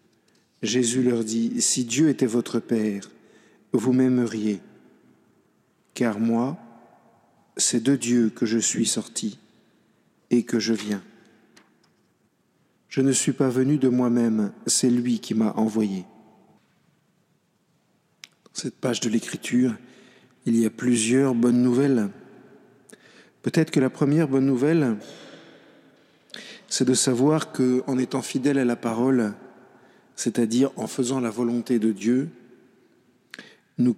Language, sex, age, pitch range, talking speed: French, male, 50-69, 115-135 Hz, 120 wpm